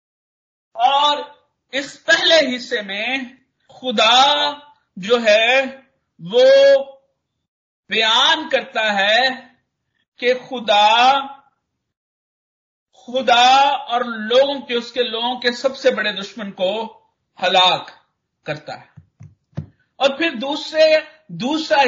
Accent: native